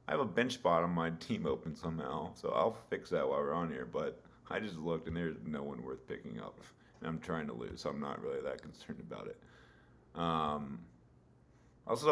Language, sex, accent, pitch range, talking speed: English, male, American, 80-95 Hz, 220 wpm